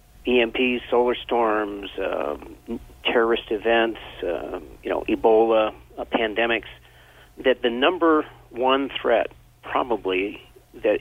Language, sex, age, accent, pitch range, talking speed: English, male, 50-69, American, 100-135 Hz, 105 wpm